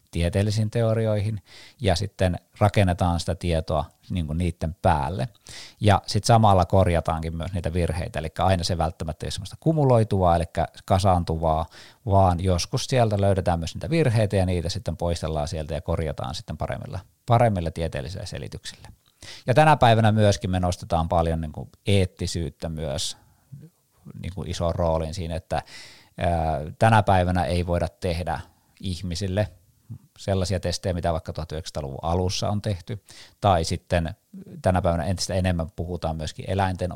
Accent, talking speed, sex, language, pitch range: native, 135 wpm, male, Finnish, 85-105 Hz